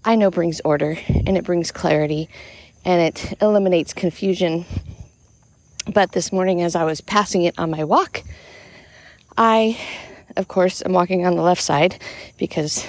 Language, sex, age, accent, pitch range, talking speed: English, female, 40-59, American, 160-195 Hz, 155 wpm